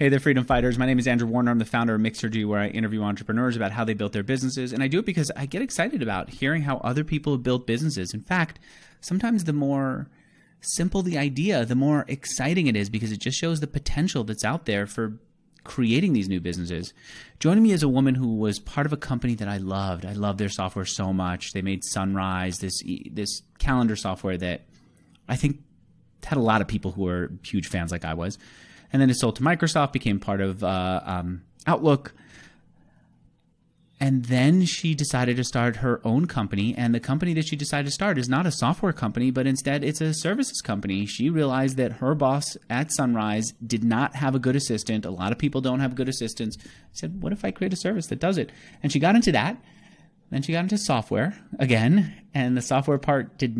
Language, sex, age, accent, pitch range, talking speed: English, male, 30-49, American, 105-145 Hz, 220 wpm